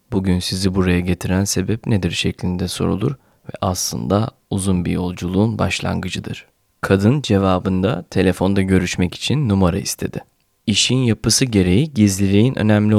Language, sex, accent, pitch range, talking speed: Turkish, male, native, 90-110 Hz, 120 wpm